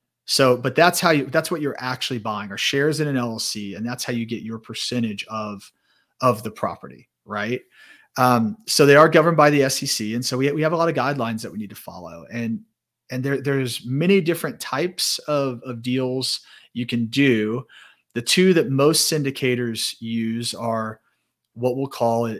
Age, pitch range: 30-49, 115-140 Hz